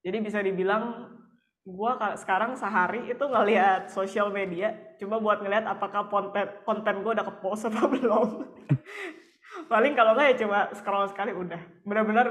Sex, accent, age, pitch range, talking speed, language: female, native, 20-39, 175-215 Hz, 145 wpm, Indonesian